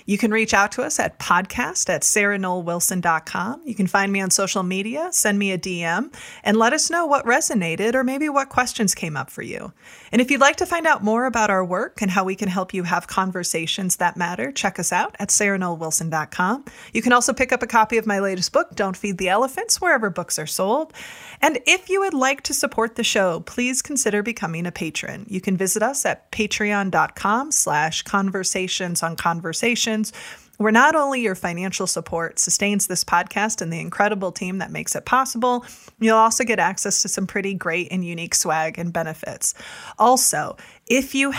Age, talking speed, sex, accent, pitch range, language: 30-49, 200 wpm, female, American, 185-235 Hz, English